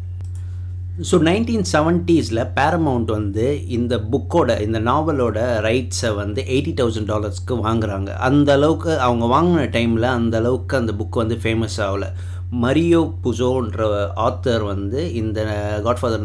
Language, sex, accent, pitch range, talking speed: Tamil, male, native, 100-130 Hz, 120 wpm